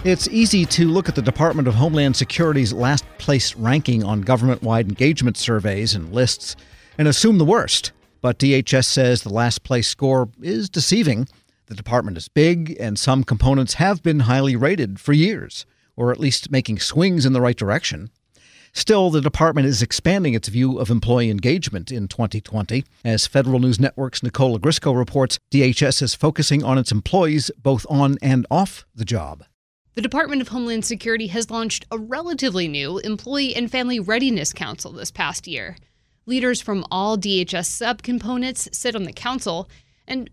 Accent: American